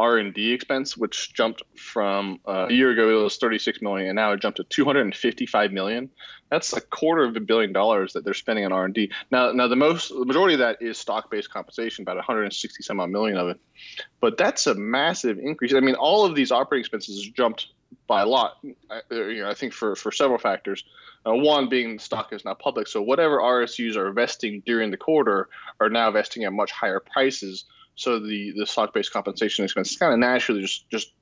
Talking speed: 215 wpm